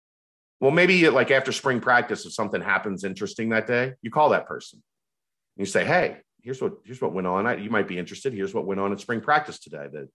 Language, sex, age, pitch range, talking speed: English, male, 40-59, 100-125 Hz, 230 wpm